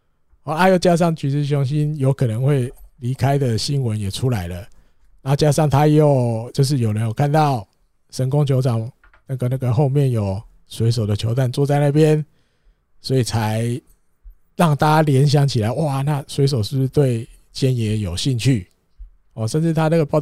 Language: Chinese